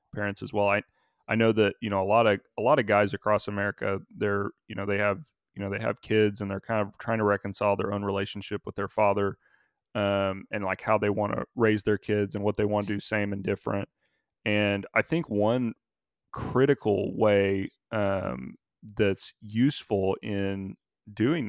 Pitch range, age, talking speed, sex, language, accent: 100-110 Hz, 30-49, 200 wpm, male, English, American